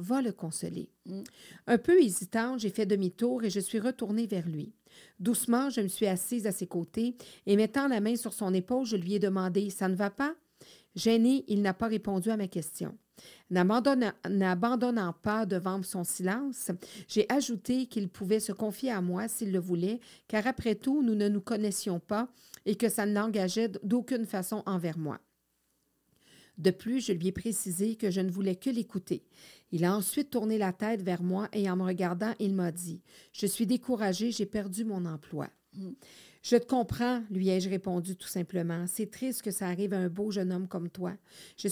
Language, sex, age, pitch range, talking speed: French, female, 50-69, 185-230 Hz, 200 wpm